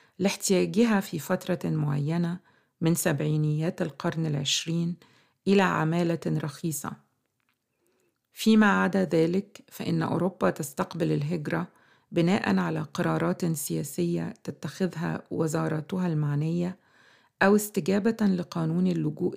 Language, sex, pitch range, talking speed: Arabic, female, 155-180 Hz, 90 wpm